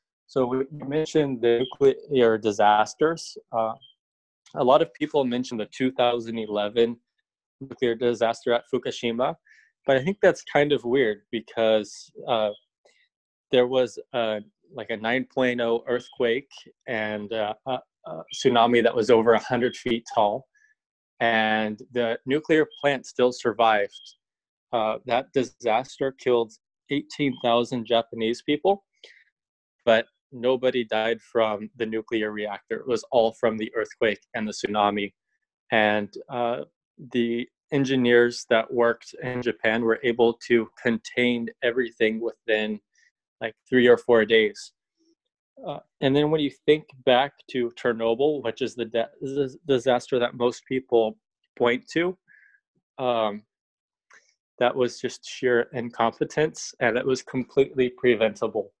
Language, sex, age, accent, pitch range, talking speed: English, male, 20-39, American, 115-135 Hz, 120 wpm